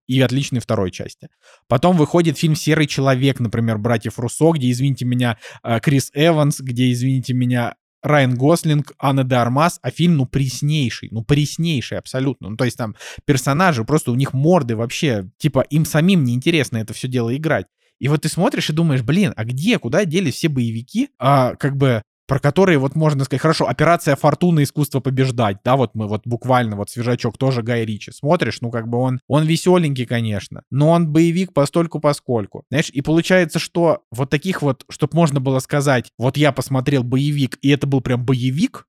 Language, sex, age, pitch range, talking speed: Russian, male, 20-39, 120-150 Hz, 180 wpm